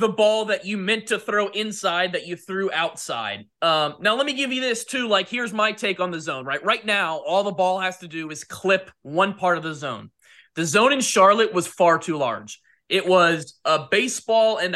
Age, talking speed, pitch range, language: 20-39, 230 wpm, 170-215 Hz, English